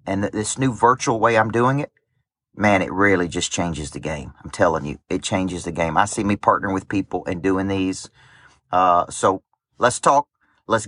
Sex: male